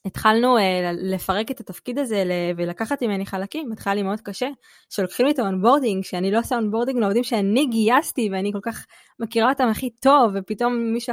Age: 20-39